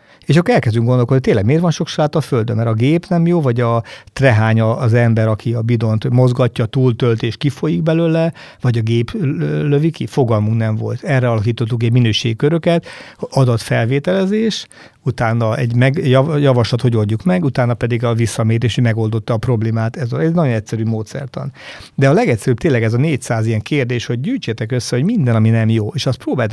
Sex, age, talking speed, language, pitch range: male, 50-69, 190 wpm, Hungarian, 115-135 Hz